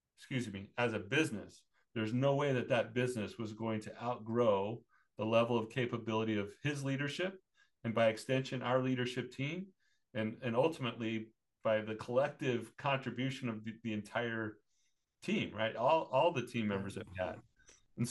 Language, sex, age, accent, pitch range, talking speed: English, male, 40-59, American, 110-135 Hz, 160 wpm